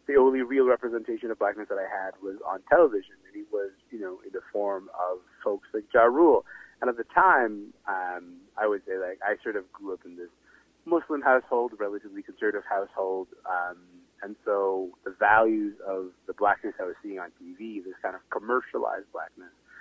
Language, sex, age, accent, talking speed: English, male, 30-49, American, 195 wpm